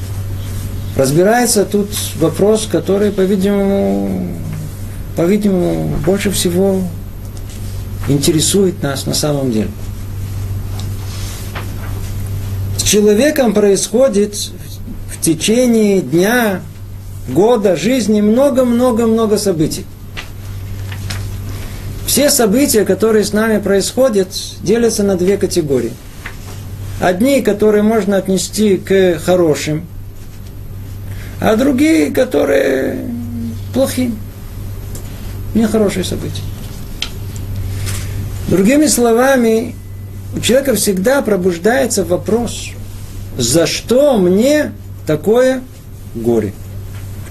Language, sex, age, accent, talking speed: Russian, male, 50-69, native, 75 wpm